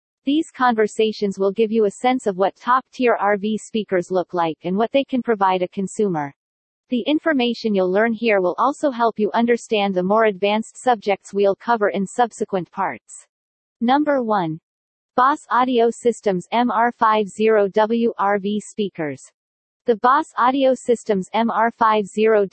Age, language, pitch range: 40-59, English, 195-240 Hz